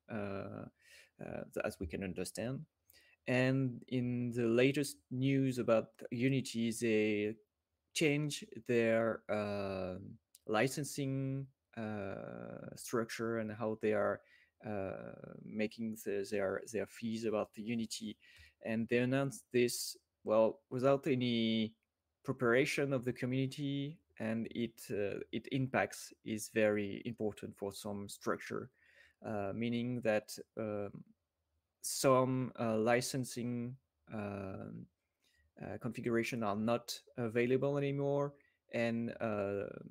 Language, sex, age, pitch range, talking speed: English, male, 20-39, 105-125 Hz, 105 wpm